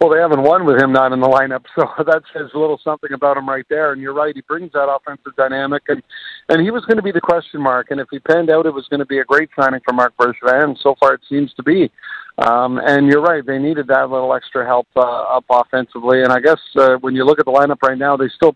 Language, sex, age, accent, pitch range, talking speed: English, male, 50-69, American, 130-150 Hz, 280 wpm